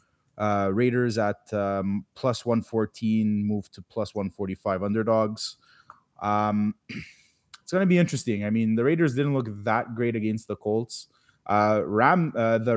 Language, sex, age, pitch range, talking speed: English, male, 20-39, 105-130 Hz, 150 wpm